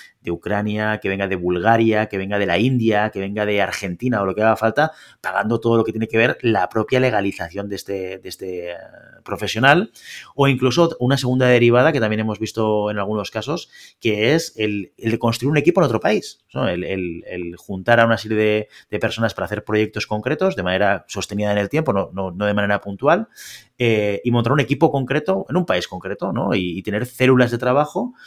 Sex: male